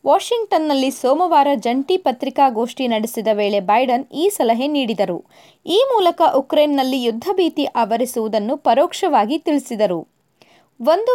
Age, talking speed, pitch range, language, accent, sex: 20-39, 100 wpm, 240-335 Hz, Kannada, native, female